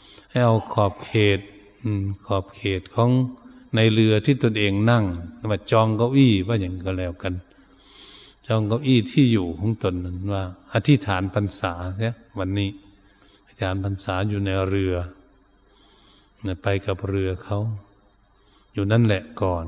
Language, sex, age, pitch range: Thai, male, 70-89, 95-110 Hz